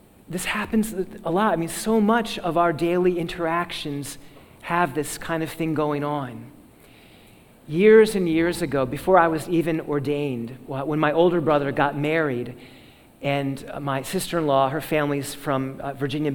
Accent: American